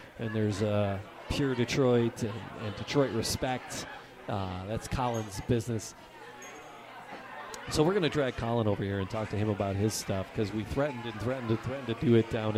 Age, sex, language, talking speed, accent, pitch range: 40-59, male, English, 185 wpm, American, 110-155 Hz